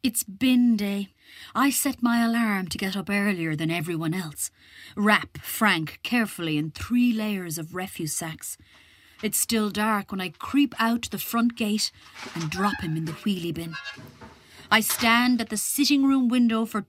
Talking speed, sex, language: 175 wpm, female, English